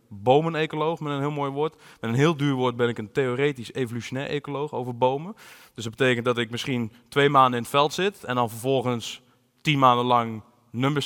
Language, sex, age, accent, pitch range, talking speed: Dutch, male, 20-39, Dutch, 130-160 Hz, 205 wpm